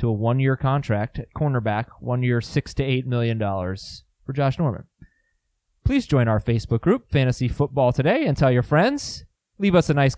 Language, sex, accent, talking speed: English, male, American, 185 wpm